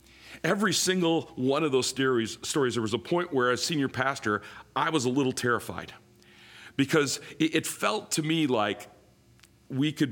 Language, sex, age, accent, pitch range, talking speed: English, male, 40-59, American, 110-135 Hz, 165 wpm